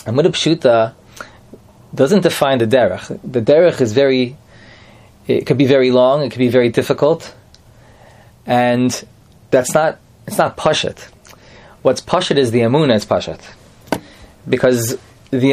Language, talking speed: English, 130 wpm